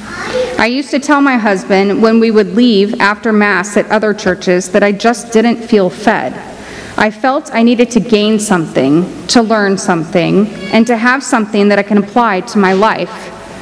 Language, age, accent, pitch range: English, 30-49, American, 190-230 Hz